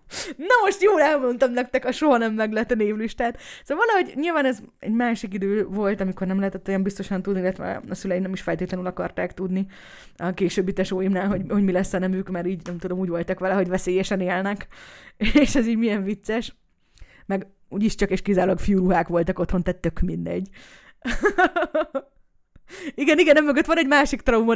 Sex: female